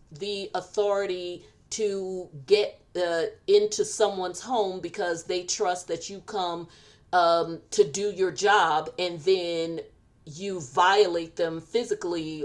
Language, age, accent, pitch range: English, 40-59, American, 155-215 Hz